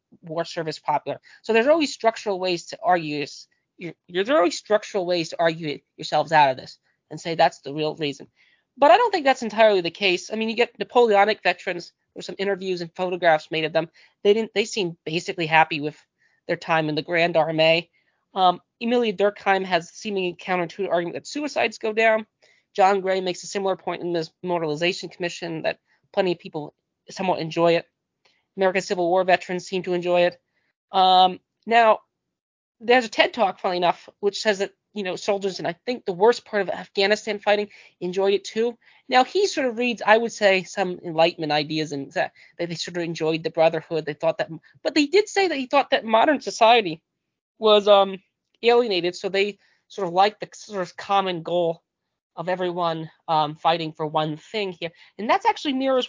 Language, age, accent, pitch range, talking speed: English, 20-39, American, 170-210 Hz, 195 wpm